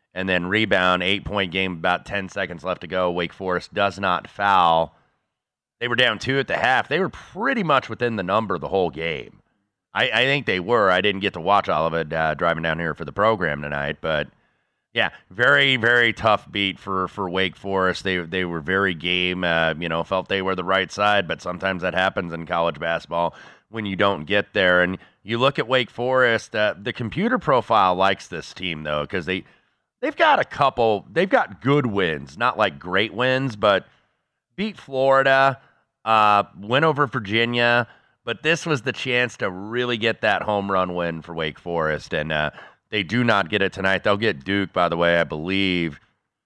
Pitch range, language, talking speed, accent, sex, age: 85-110 Hz, English, 205 wpm, American, male, 30-49